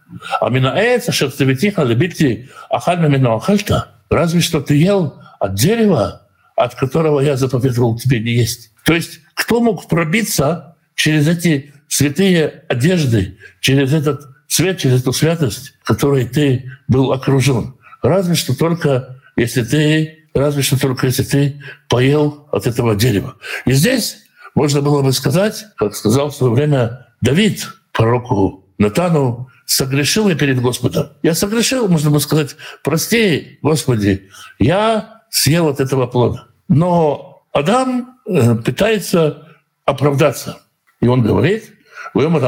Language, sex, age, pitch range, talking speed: Russian, male, 60-79, 130-175 Hz, 115 wpm